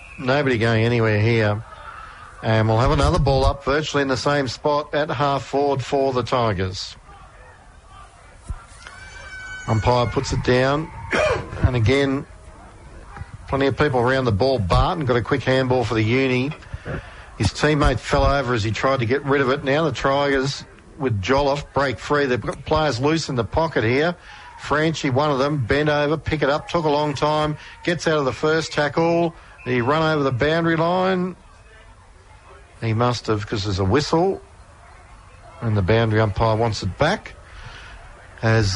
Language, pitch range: English, 110-145 Hz